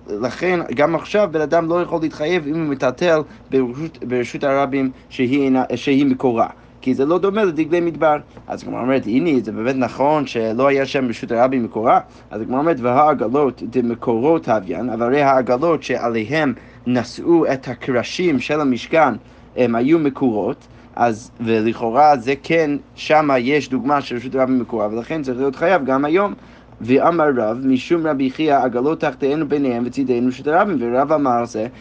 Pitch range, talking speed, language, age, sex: 125-160 Hz, 165 wpm, Hebrew, 30-49, male